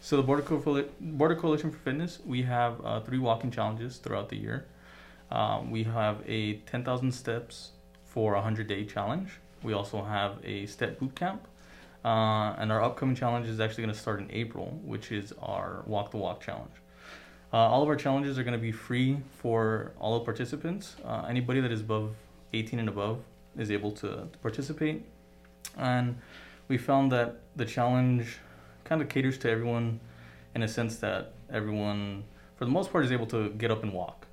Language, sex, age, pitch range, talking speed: English, male, 20-39, 105-125 Hz, 185 wpm